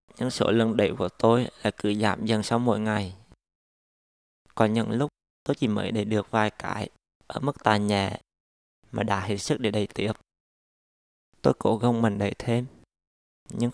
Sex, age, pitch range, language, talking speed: male, 20-39, 105-120 Hz, Vietnamese, 180 wpm